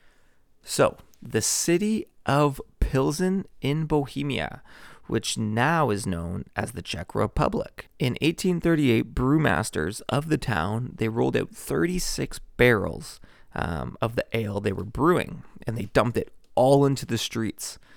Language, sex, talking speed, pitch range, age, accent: English, male, 135 wpm, 100-125 Hz, 30-49, American